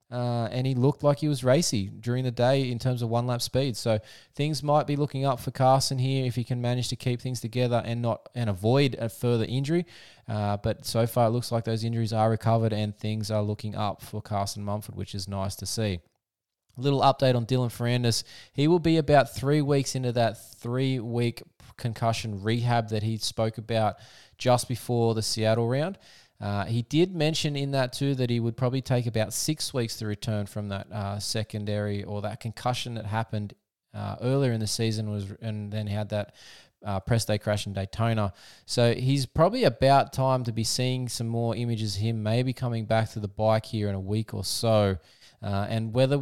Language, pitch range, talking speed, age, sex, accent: English, 110-130 Hz, 210 wpm, 20-39, male, Australian